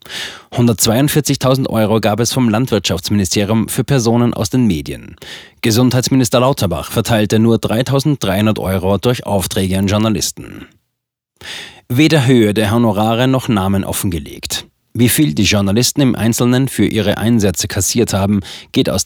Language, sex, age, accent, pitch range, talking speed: German, male, 30-49, German, 100-125 Hz, 125 wpm